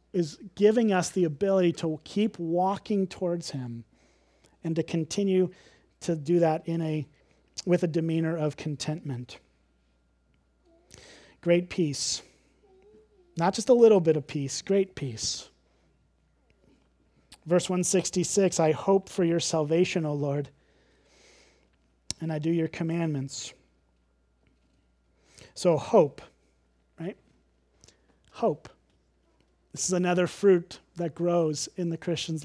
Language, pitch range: English, 155-195 Hz